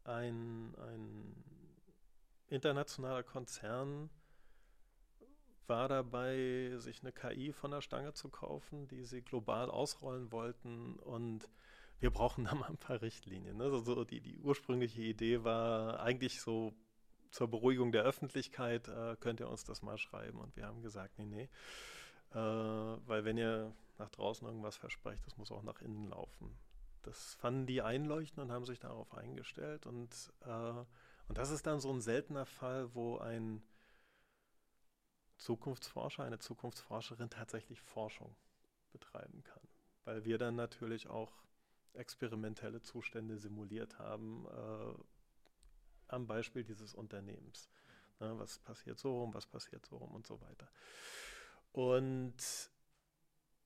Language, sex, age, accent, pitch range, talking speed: German, male, 30-49, German, 110-130 Hz, 130 wpm